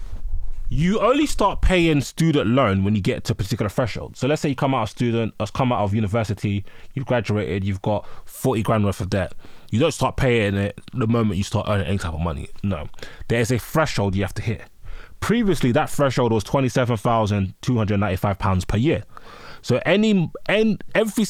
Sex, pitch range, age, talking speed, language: male, 105-140 Hz, 20-39, 185 wpm, English